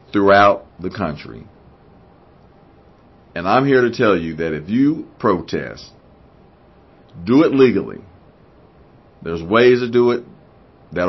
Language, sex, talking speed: English, male, 120 wpm